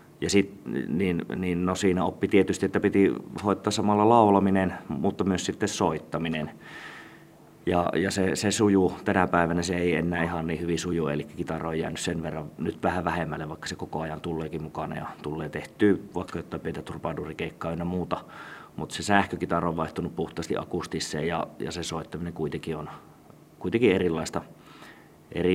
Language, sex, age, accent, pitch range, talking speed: Finnish, male, 30-49, native, 85-95 Hz, 165 wpm